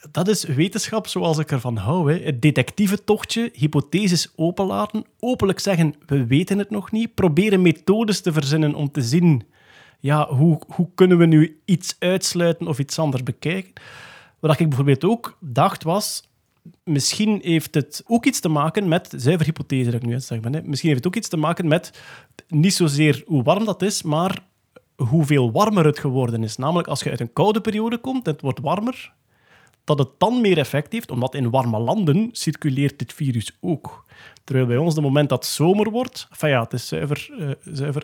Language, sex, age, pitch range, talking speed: Dutch, male, 30-49, 135-190 Hz, 190 wpm